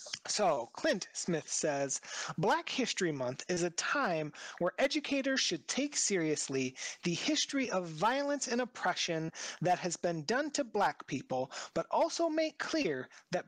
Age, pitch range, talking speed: 30-49, 165-240 Hz, 145 wpm